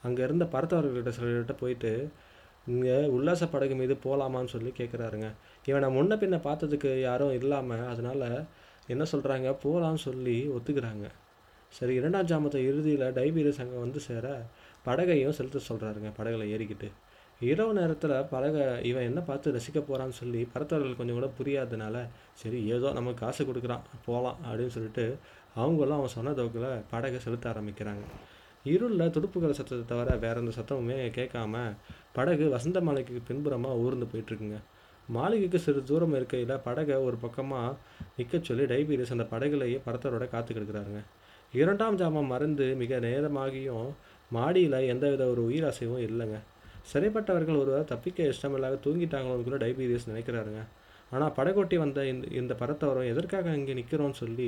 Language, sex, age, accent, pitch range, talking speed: Tamil, male, 20-39, native, 120-145 Hz, 130 wpm